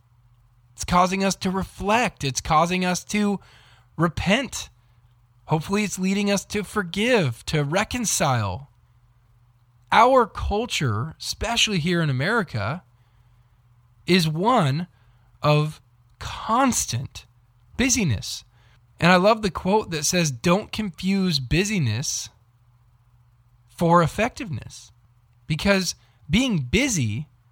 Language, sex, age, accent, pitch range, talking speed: English, male, 20-39, American, 120-180 Hz, 95 wpm